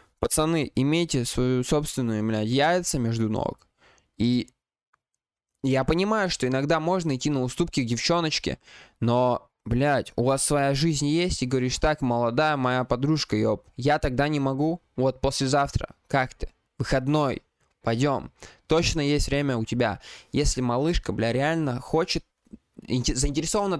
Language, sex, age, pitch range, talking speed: Russian, male, 20-39, 125-165 Hz, 135 wpm